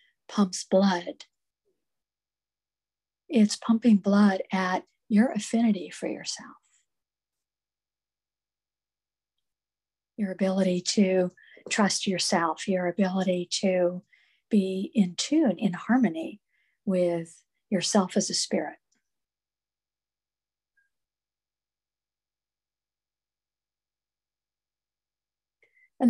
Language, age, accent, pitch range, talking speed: English, 50-69, American, 170-205 Hz, 65 wpm